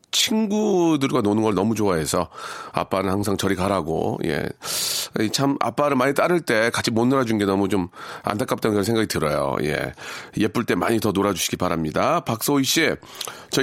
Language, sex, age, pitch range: Korean, male, 40-59, 105-140 Hz